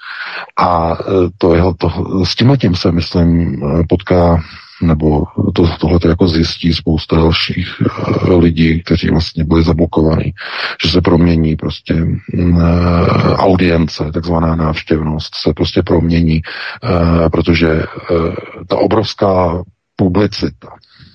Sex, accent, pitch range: male, native, 80-95 Hz